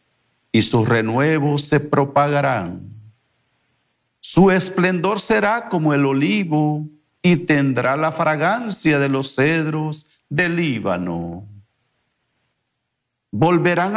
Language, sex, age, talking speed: English, male, 50-69, 90 wpm